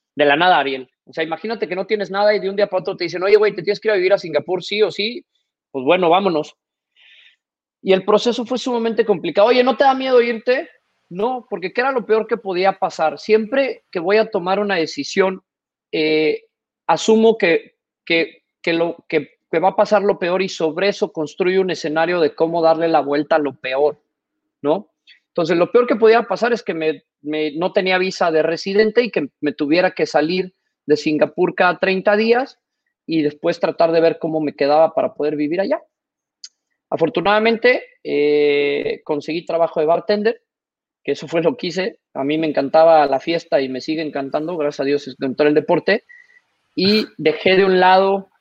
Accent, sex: Mexican, male